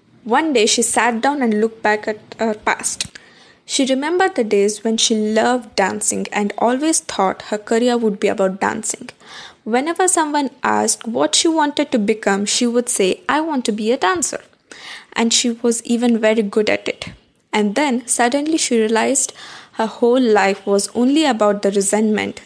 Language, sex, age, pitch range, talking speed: English, female, 20-39, 205-265 Hz, 175 wpm